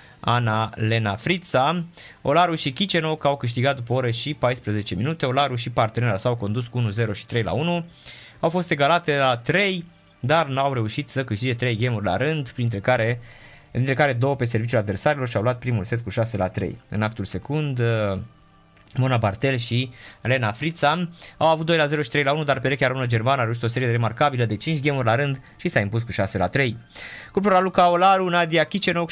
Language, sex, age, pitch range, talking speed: Romanian, male, 20-39, 115-150 Hz, 200 wpm